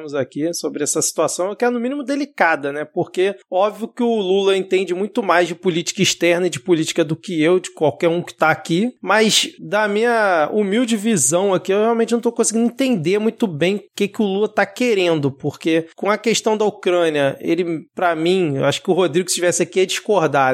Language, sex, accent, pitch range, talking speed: Portuguese, male, Brazilian, 165-210 Hz, 215 wpm